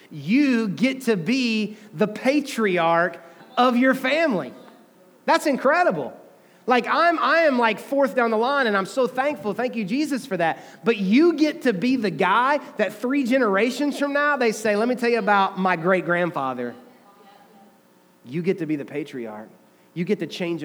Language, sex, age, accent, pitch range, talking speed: English, male, 30-49, American, 160-220 Hz, 175 wpm